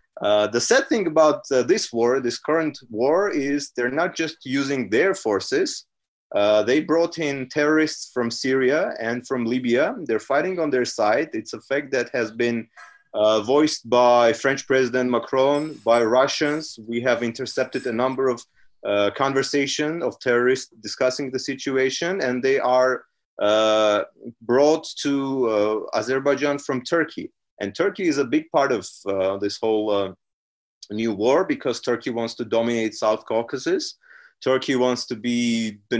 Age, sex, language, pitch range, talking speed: 30-49, male, English, 115-145 Hz, 160 wpm